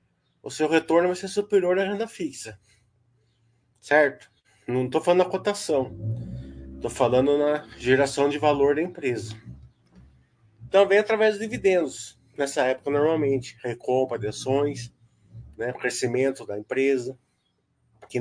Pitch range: 115-150 Hz